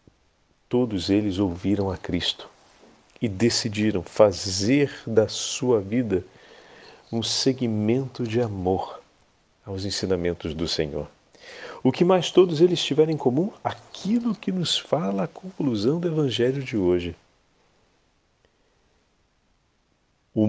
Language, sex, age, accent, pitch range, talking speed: Portuguese, male, 40-59, Brazilian, 95-140 Hz, 110 wpm